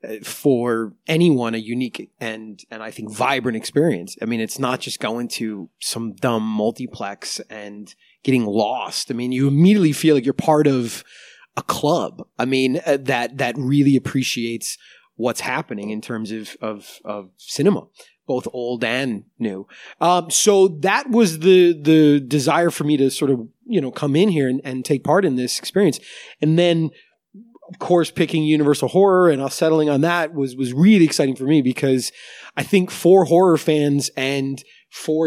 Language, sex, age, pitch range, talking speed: English, male, 30-49, 125-165 Hz, 170 wpm